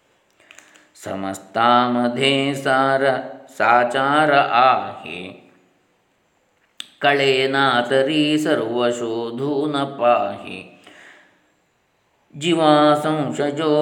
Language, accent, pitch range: Kannada, native, 125-170 Hz